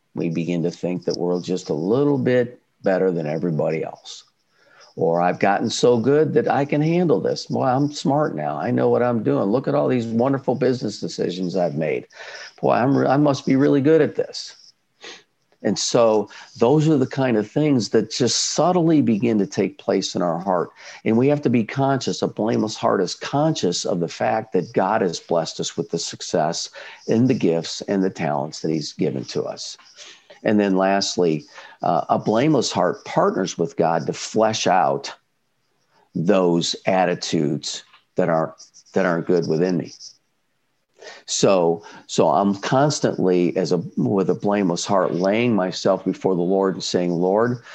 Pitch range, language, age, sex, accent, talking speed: 90-125 Hz, English, 50-69, male, American, 175 wpm